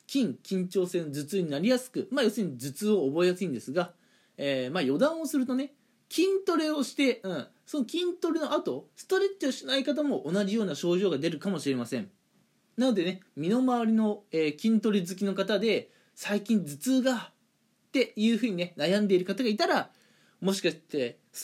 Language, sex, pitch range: Japanese, male, 165-250 Hz